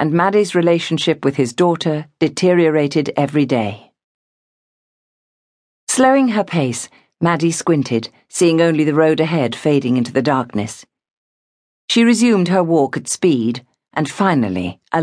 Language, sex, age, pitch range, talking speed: English, female, 50-69, 125-175 Hz, 130 wpm